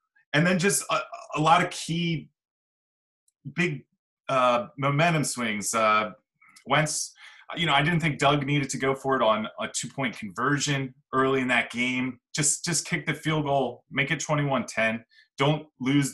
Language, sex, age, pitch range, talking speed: English, male, 20-39, 115-150 Hz, 165 wpm